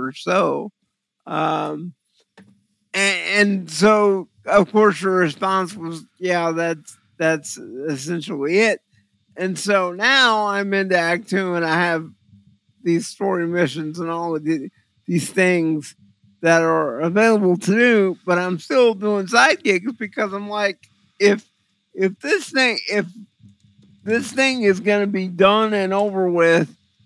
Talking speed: 140 wpm